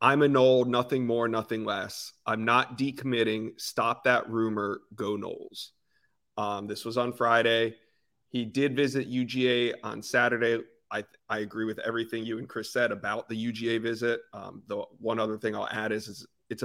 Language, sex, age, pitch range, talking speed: English, male, 30-49, 110-125 Hz, 175 wpm